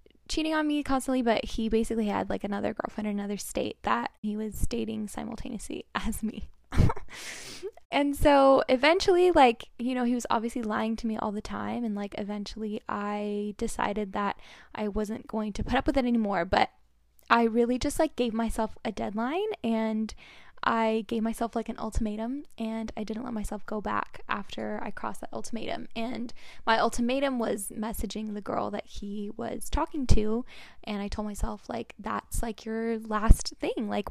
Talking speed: 180 wpm